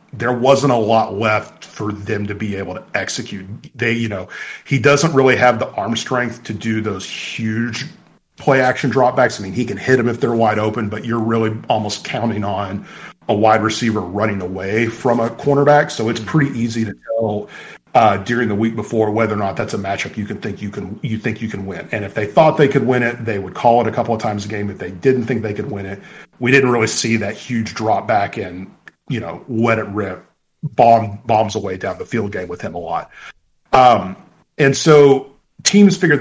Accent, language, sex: American, English, male